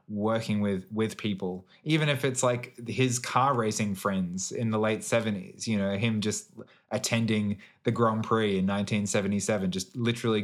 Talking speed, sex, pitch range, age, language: 160 wpm, male, 105-125 Hz, 20-39, English